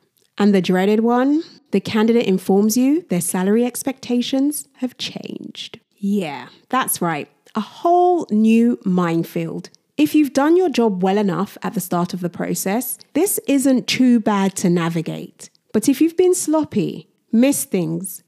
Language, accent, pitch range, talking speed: English, British, 190-255 Hz, 150 wpm